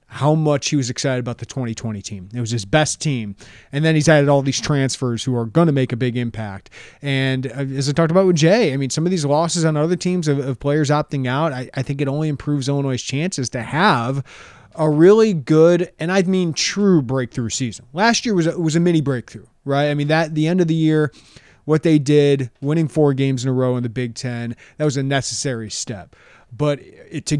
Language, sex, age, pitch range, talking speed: English, male, 30-49, 130-165 Hz, 230 wpm